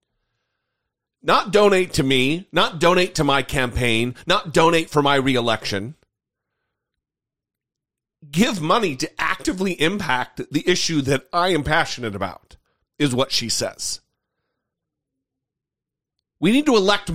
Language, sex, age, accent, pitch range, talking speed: English, male, 40-59, American, 115-165 Hz, 120 wpm